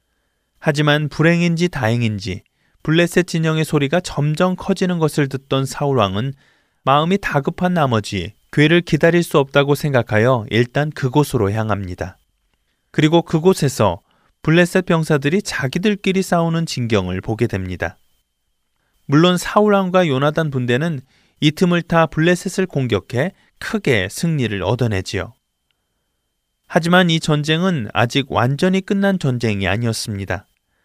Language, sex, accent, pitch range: Korean, male, native, 110-170 Hz